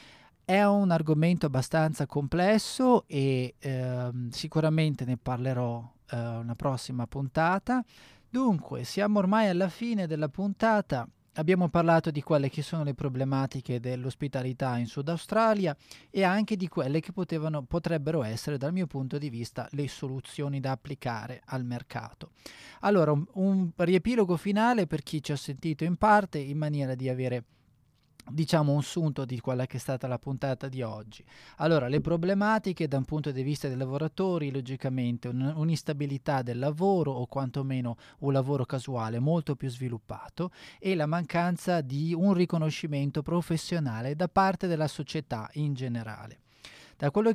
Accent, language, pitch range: native, Italian, 130-170 Hz